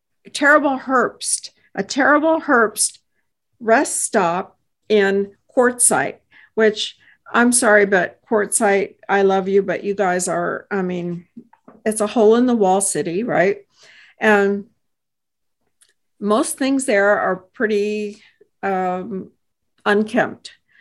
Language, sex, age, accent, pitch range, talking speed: English, female, 50-69, American, 195-225 Hz, 110 wpm